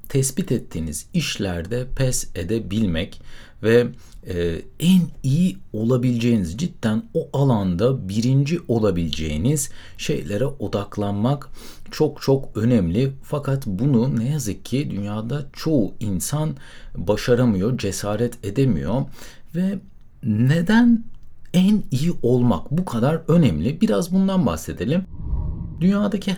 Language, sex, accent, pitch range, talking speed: Turkish, male, native, 100-155 Hz, 100 wpm